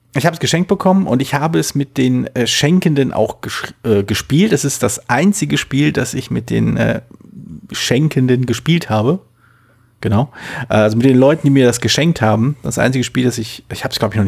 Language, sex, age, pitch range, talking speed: German, male, 40-59, 110-140 Hz, 215 wpm